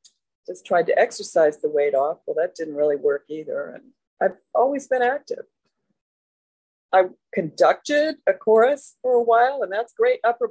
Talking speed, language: 165 wpm, English